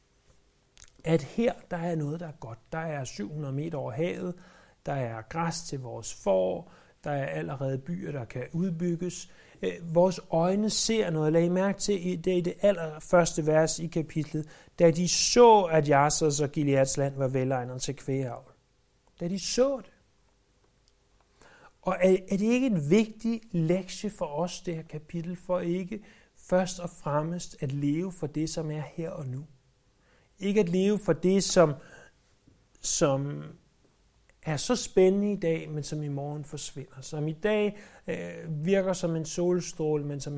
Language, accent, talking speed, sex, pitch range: Danish, native, 170 wpm, male, 135-180 Hz